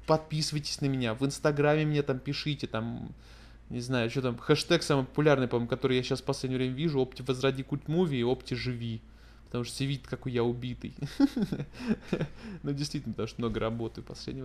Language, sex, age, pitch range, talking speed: Russian, male, 20-39, 120-145 Hz, 185 wpm